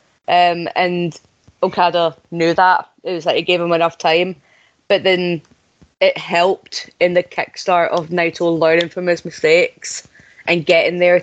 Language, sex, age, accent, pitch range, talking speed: English, female, 20-39, British, 175-200 Hz, 155 wpm